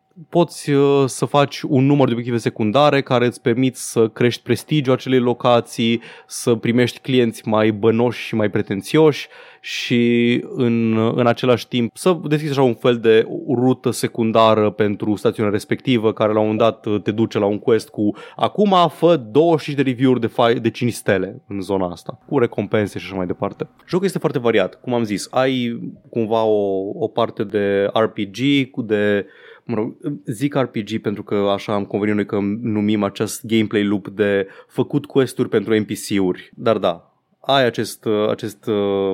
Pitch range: 105-130 Hz